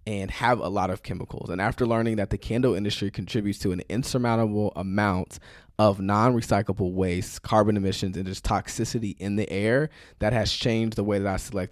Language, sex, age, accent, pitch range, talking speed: English, male, 20-39, American, 95-115 Hz, 190 wpm